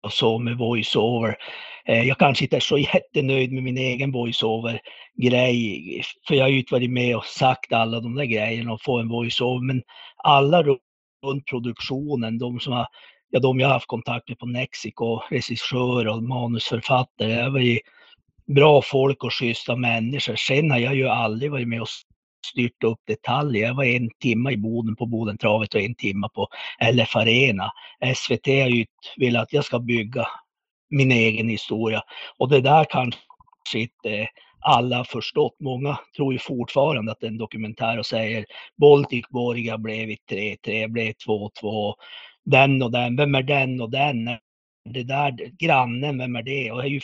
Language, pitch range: Swedish, 115-135 Hz